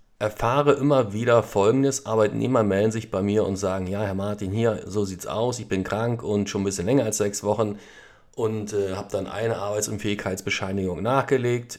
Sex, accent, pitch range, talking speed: male, German, 105-135 Hz, 195 wpm